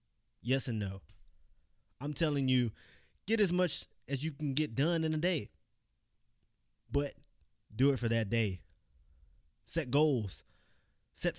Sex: male